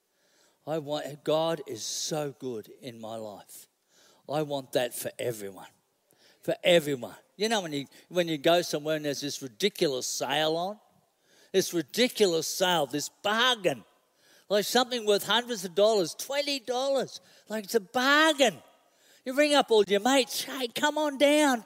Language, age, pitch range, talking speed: English, 50-69, 170-250 Hz, 160 wpm